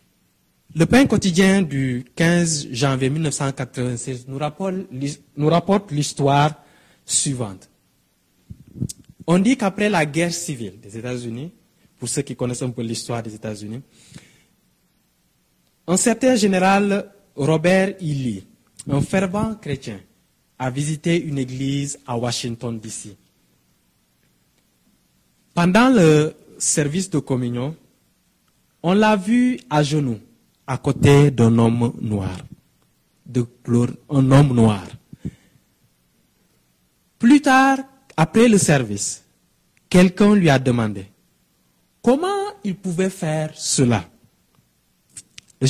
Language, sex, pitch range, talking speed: French, male, 120-175 Hz, 100 wpm